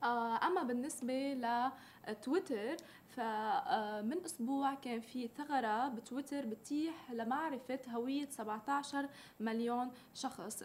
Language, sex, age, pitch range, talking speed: Arabic, female, 20-39, 230-280 Hz, 85 wpm